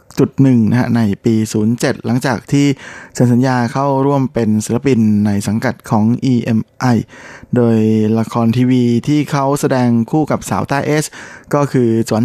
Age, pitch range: 20-39, 115-135 Hz